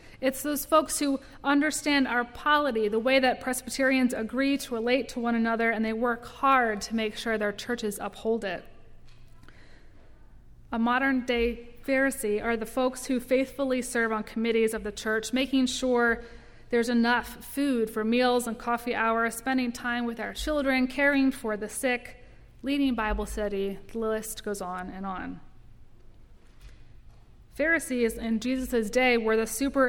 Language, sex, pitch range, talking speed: English, female, 220-255 Hz, 155 wpm